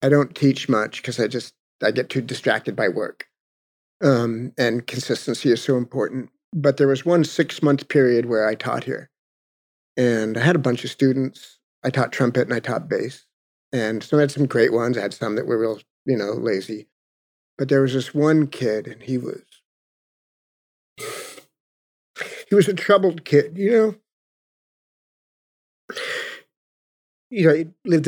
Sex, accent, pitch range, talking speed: male, American, 125-165 Hz, 170 wpm